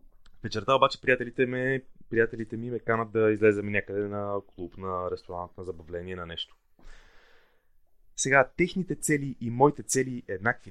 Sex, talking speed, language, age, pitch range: male, 145 wpm, Bulgarian, 20-39, 105-155 Hz